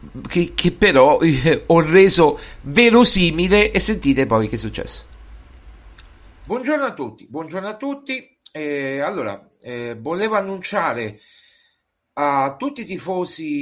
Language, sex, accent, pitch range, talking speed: Italian, male, native, 115-165 Hz, 125 wpm